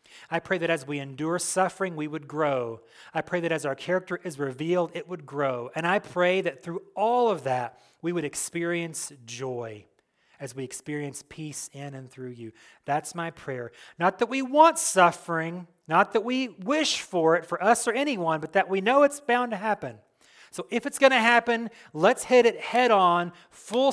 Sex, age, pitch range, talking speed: male, 30-49, 140-195 Hz, 200 wpm